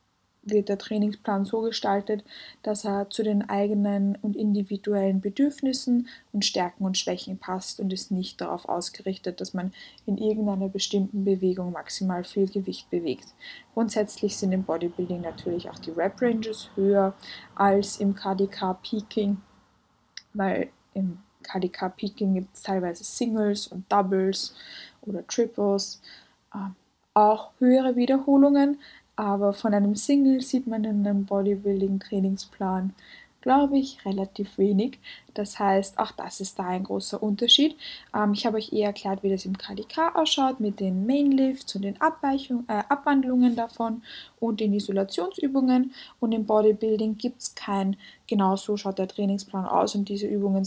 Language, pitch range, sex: German, 195-230 Hz, female